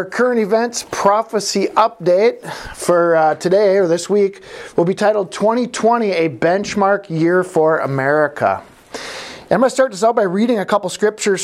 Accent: American